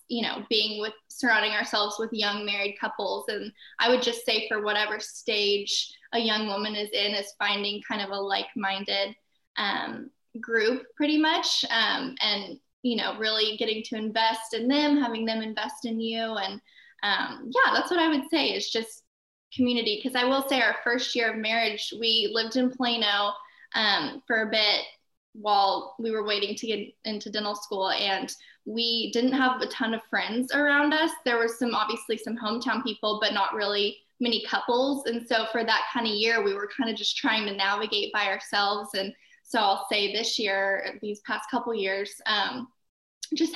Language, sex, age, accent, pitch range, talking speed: English, female, 10-29, American, 210-245 Hz, 185 wpm